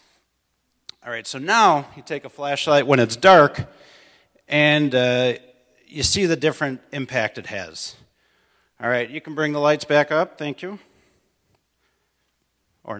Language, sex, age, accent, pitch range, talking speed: English, male, 40-59, American, 125-165 Hz, 150 wpm